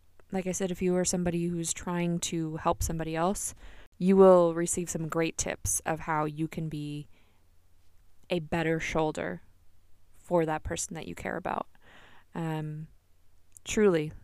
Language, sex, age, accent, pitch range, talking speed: English, female, 20-39, American, 150-170 Hz, 150 wpm